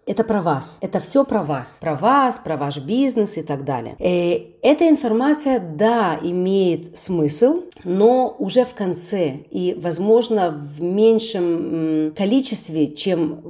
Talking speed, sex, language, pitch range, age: 140 wpm, female, Russian, 155-215 Hz, 40-59